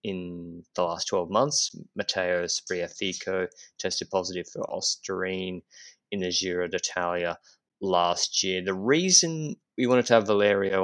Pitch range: 95-120 Hz